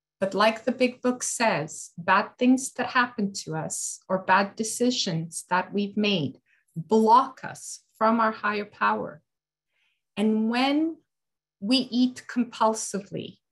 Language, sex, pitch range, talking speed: English, female, 195-245 Hz, 130 wpm